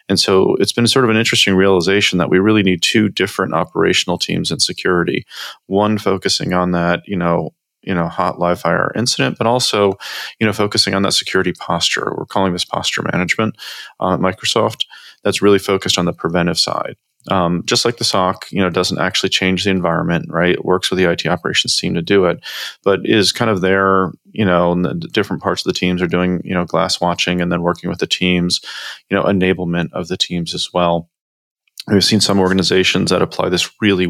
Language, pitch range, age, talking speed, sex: English, 85-95 Hz, 30-49, 210 wpm, male